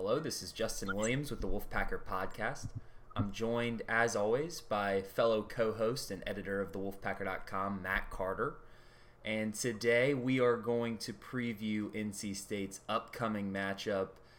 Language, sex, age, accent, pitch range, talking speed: English, male, 20-39, American, 105-120 Hz, 140 wpm